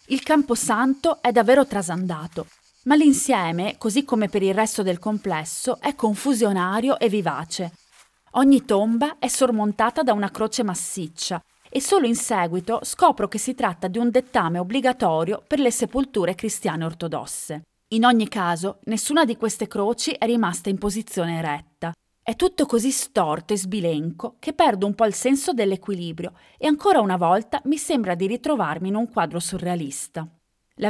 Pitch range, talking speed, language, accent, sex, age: 180-255 Hz, 160 wpm, Italian, native, female, 20-39